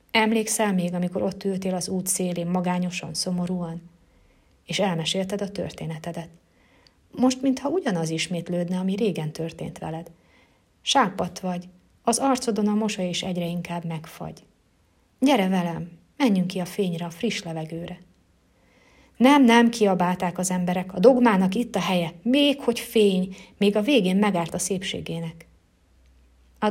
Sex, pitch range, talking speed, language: female, 160-200 Hz, 135 wpm, Hungarian